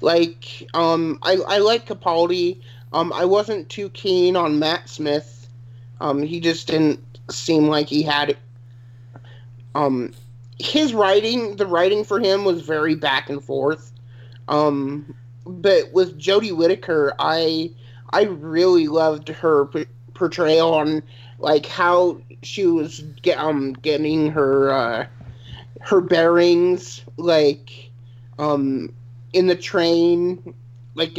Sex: male